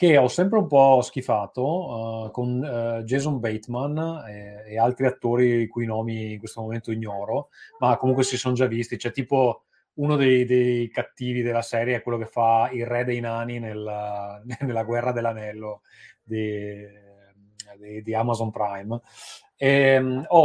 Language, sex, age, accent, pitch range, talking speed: Italian, male, 30-49, native, 110-130 Hz, 165 wpm